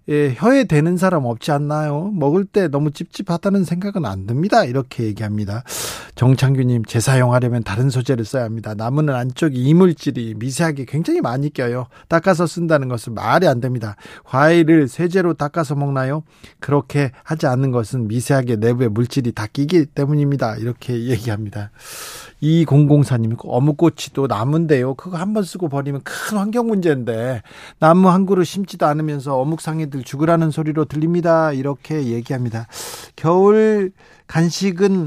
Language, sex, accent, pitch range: Korean, male, native, 125-175 Hz